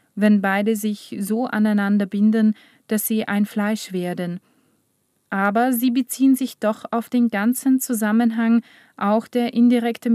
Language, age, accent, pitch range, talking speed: German, 20-39, German, 205-235 Hz, 135 wpm